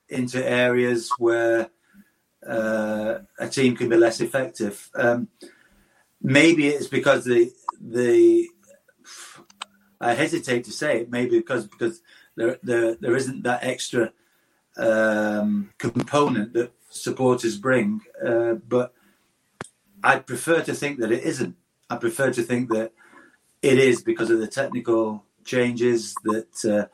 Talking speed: 125 wpm